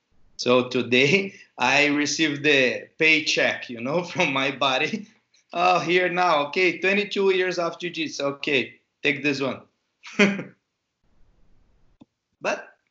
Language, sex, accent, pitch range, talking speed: English, male, Brazilian, 120-155 Hz, 110 wpm